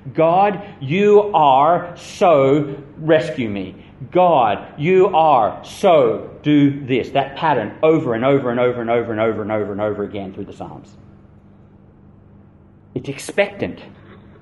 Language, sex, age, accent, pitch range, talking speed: English, male, 40-59, Australian, 120-165 Hz, 135 wpm